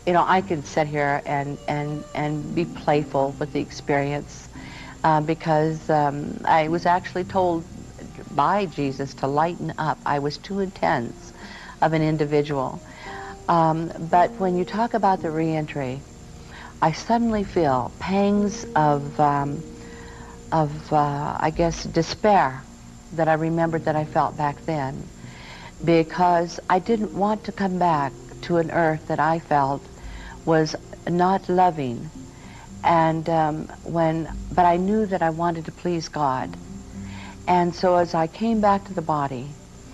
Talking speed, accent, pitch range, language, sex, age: 145 wpm, American, 145-175 Hz, English, female, 50-69